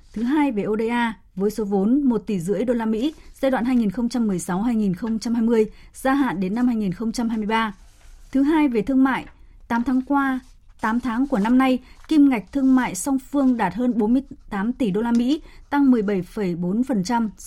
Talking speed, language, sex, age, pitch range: 165 wpm, Vietnamese, female, 20-39, 210-260 Hz